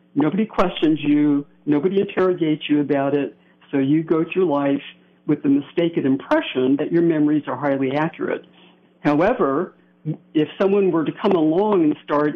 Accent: American